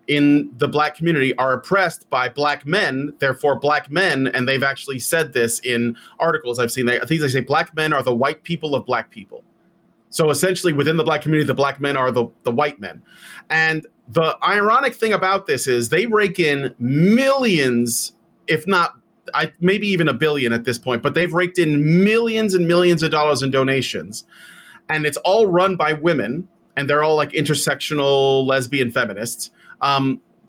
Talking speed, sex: 185 wpm, male